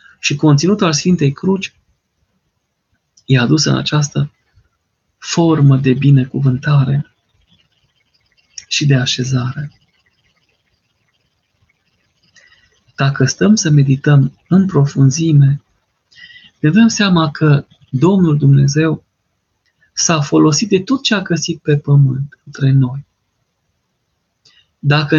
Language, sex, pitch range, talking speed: Romanian, male, 140-160 Hz, 95 wpm